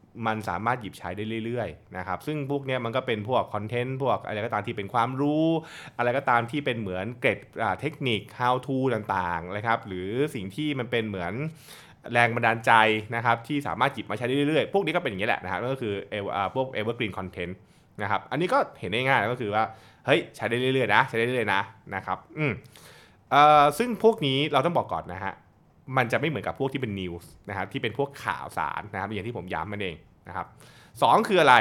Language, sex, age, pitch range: Thai, male, 20-39, 110-145 Hz